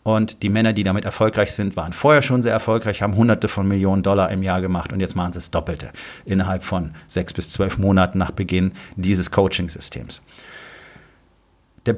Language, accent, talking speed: German, German, 185 wpm